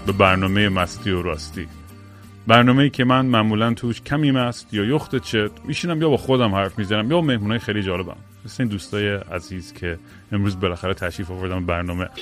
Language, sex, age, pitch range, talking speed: Persian, male, 30-49, 100-125 Hz, 170 wpm